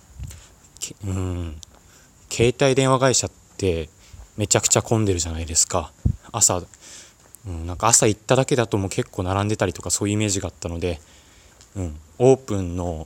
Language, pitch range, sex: Japanese, 85-110 Hz, male